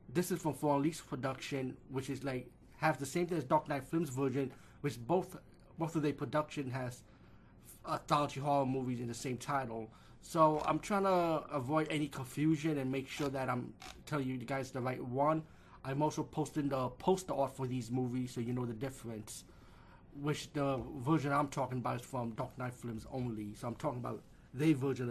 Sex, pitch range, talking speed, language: male, 125-150 Hz, 195 wpm, English